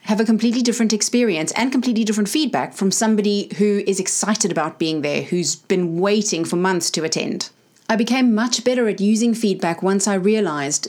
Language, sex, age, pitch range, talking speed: English, female, 30-49, 185-225 Hz, 185 wpm